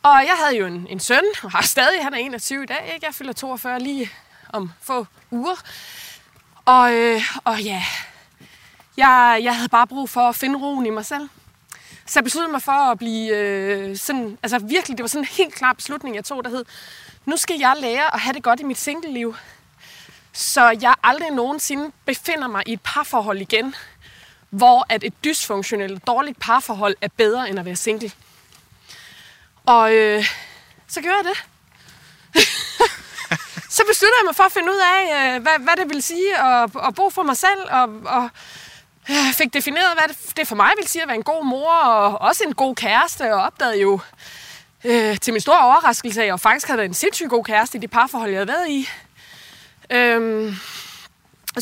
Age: 20-39